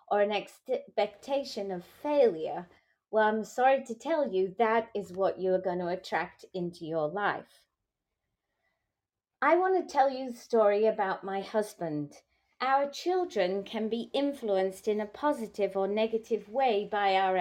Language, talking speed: English, 155 wpm